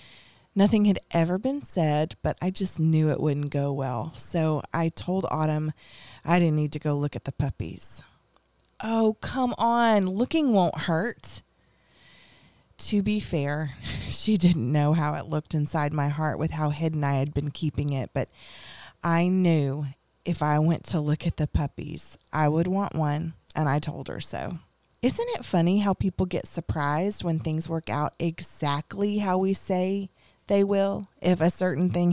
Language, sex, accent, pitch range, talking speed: English, female, American, 145-180 Hz, 175 wpm